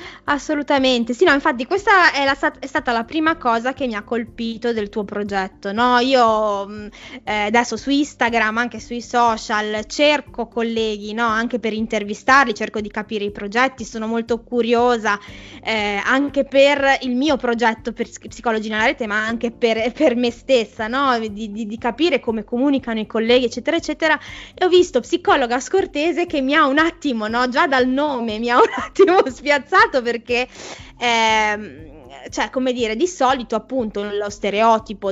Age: 20-39